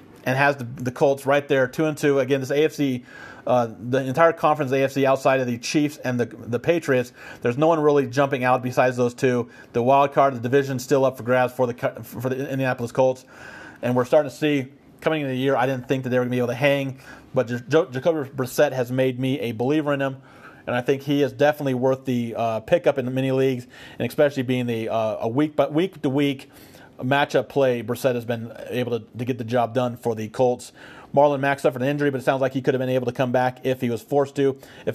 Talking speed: 250 wpm